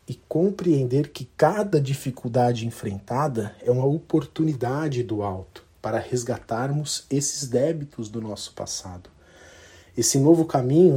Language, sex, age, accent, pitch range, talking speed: Portuguese, male, 40-59, Brazilian, 115-150 Hz, 115 wpm